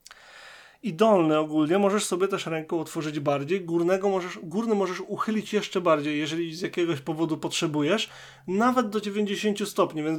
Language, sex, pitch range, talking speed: Polish, male, 155-190 Hz, 155 wpm